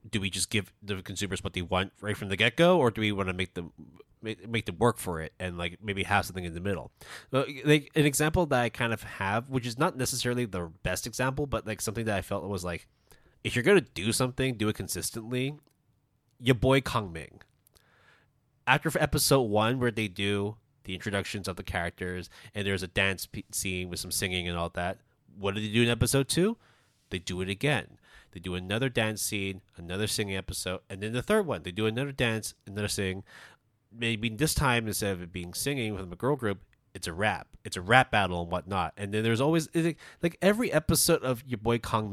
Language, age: English, 20-39